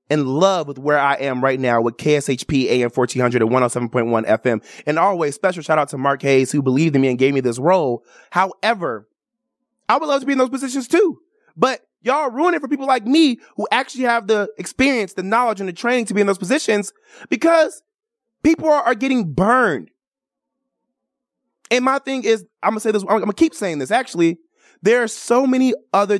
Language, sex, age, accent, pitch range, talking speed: English, male, 20-39, American, 165-235 Hz, 200 wpm